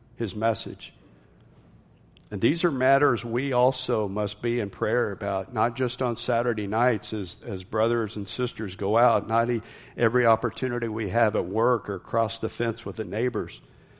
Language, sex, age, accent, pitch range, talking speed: English, male, 50-69, American, 105-120 Hz, 165 wpm